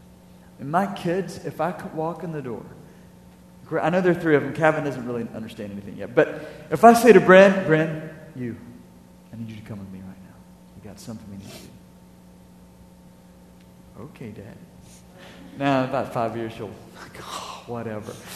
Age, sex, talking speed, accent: 40-59, male, 185 wpm, American